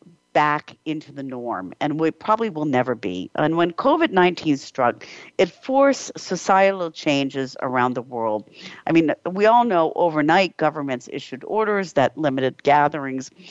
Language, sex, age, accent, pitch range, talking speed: English, female, 50-69, American, 140-195 Hz, 150 wpm